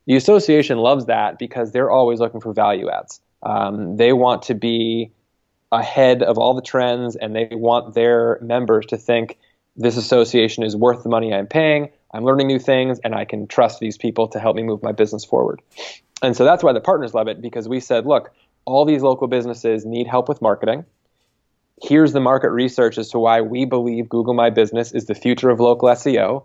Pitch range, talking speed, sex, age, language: 115-130 Hz, 205 wpm, male, 20-39, English